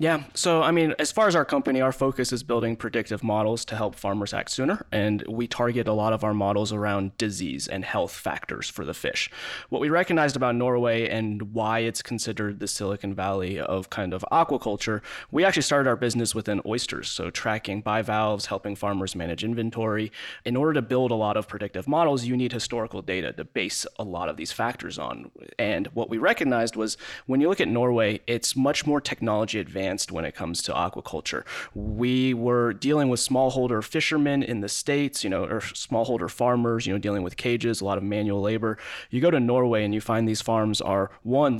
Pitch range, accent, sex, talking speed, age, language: 100-125 Hz, American, male, 205 wpm, 20-39, English